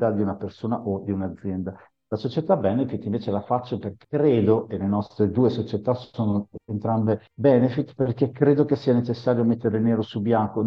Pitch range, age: 105-120 Hz, 50-69